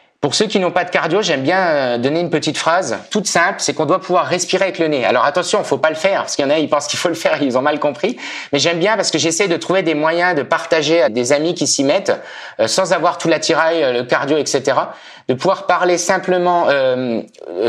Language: French